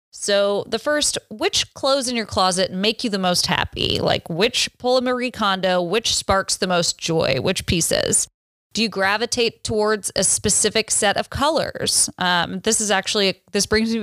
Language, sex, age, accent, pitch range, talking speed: English, female, 20-39, American, 180-225 Hz, 180 wpm